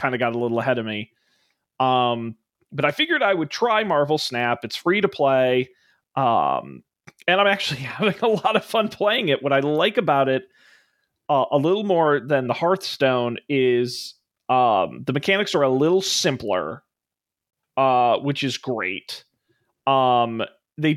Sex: male